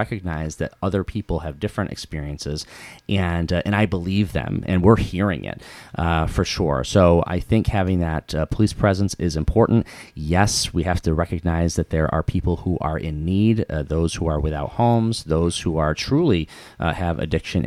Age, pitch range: 30-49, 80-95 Hz